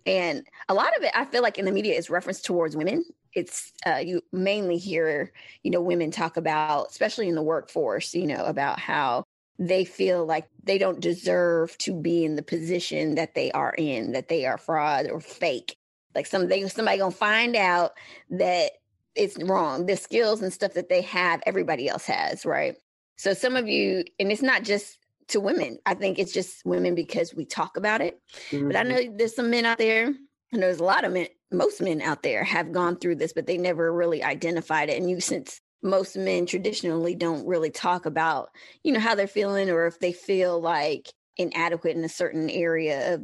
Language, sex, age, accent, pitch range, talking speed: English, female, 20-39, American, 170-210 Hz, 210 wpm